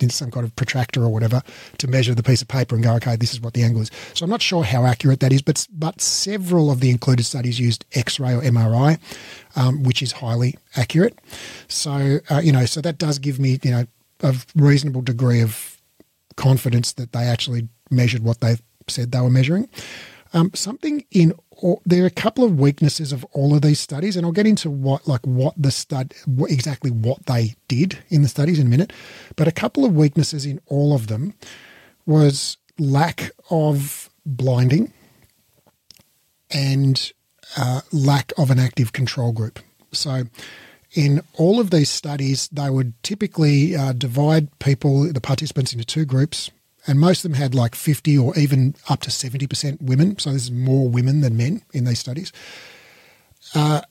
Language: English